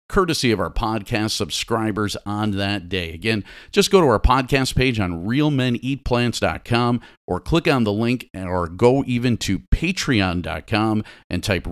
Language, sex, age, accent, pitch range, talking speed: English, male, 50-69, American, 105-140 Hz, 150 wpm